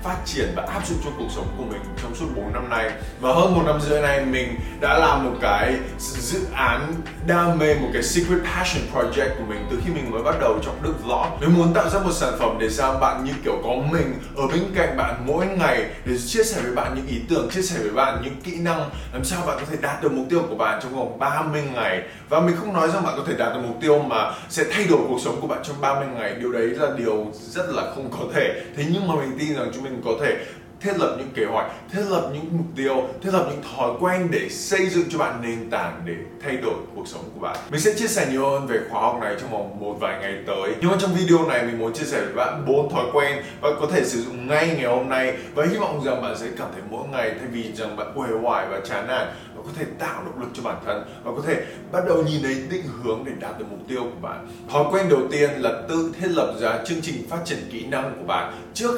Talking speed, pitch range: 275 wpm, 115-170 Hz